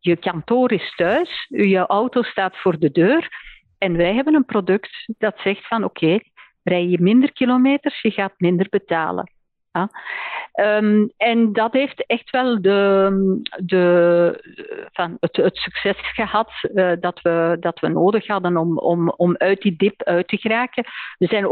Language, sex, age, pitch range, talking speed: Dutch, female, 50-69, 175-225 Hz, 165 wpm